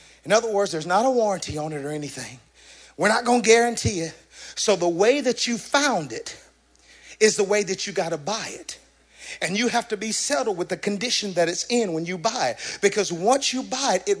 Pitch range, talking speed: 200-265 Hz, 230 wpm